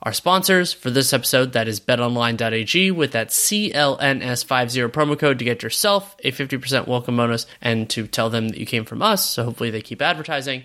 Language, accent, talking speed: English, American, 190 wpm